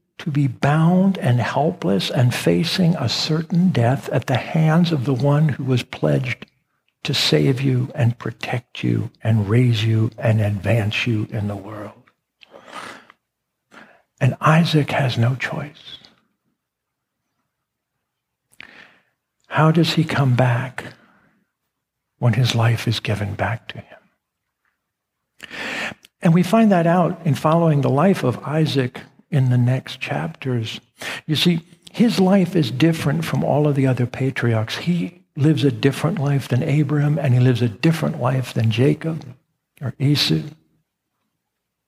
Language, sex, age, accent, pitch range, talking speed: English, male, 60-79, American, 120-155 Hz, 140 wpm